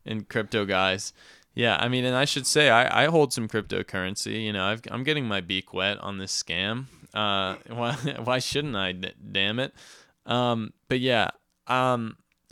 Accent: American